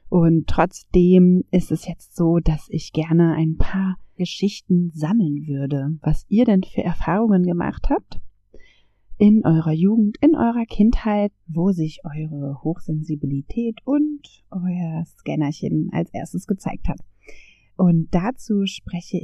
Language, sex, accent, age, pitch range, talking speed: German, female, German, 30-49, 160-210 Hz, 130 wpm